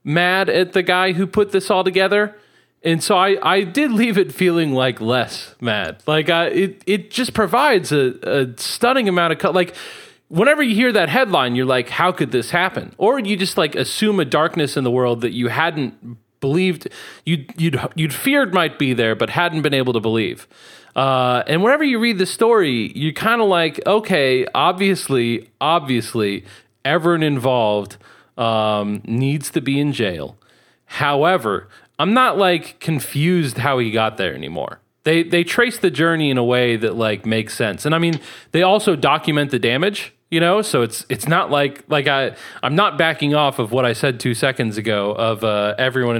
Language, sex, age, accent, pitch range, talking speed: English, male, 30-49, American, 120-180 Hz, 190 wpm